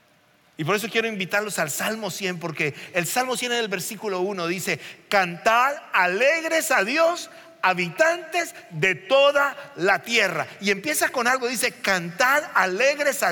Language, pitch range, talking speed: Spanish, 205-280 Hz, 155 wpm